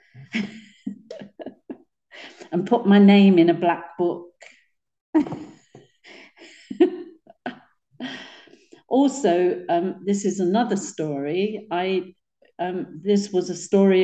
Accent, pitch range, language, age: British, 165-210 Hz, English, 50-69